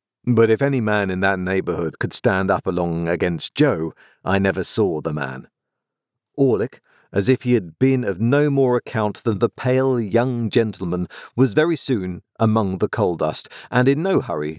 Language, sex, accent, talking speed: English, male, British, 180 wpm